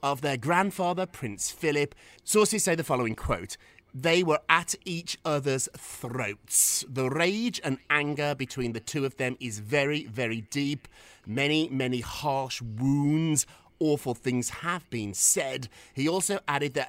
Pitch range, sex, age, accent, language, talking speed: 120-155 Hz, male, 30-49, British, English, 150 wpm